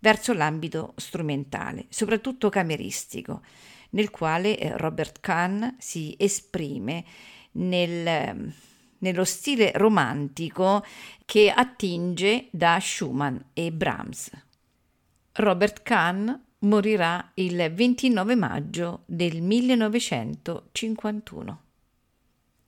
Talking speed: 75 wpm